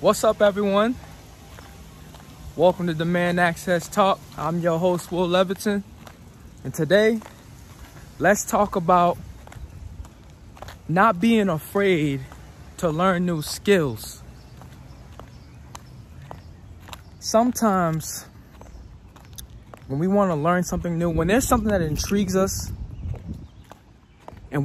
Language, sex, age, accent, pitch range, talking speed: English, male, 20-39, American, 125-185 Hz, 95 wpm